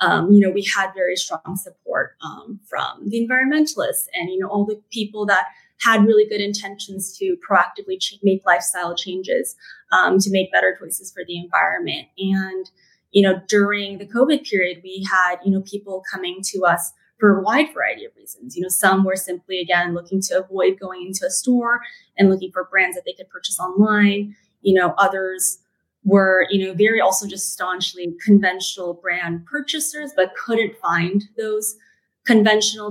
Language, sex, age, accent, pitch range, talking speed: English, female, 20-39, American, 185-220 Hz, 175 wpm